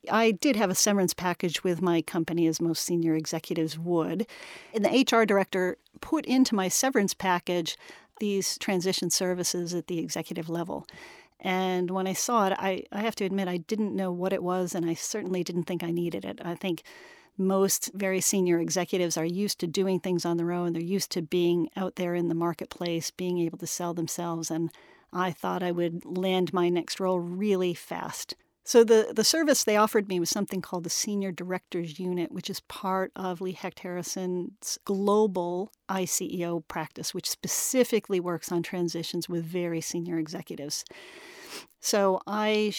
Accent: American